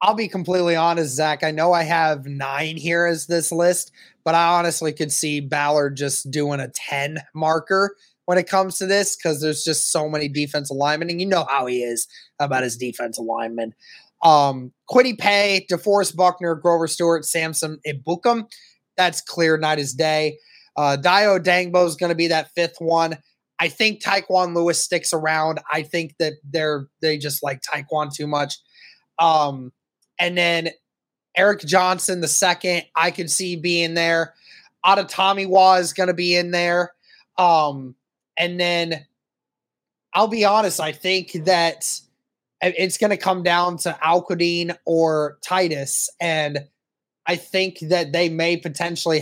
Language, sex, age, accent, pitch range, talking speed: English, male, 20-39, American, 155-180 Hz, 160 wpm